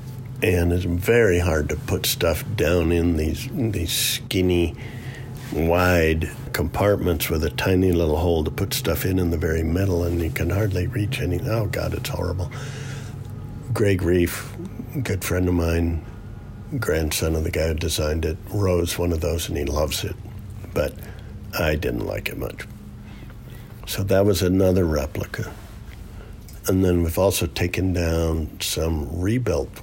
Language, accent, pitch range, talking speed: English, American, 85-105 Hz, 155 wpm